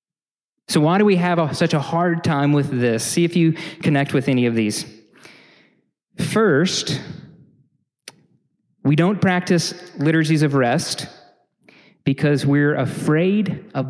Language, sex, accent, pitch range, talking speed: English, male, American, 140-180 Hz, 130 wpm